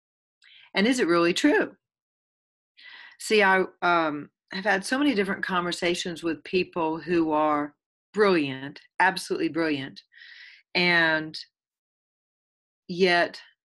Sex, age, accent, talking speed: female, 40-59, American, 100 wpm